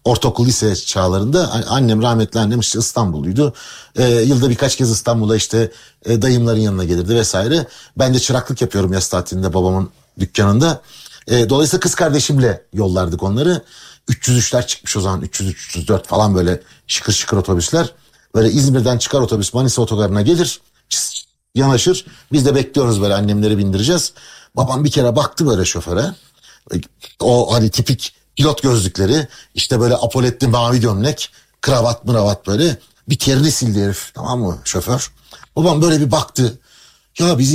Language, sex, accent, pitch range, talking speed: Turkish, male, native, 105-140 Hz, 145 wpm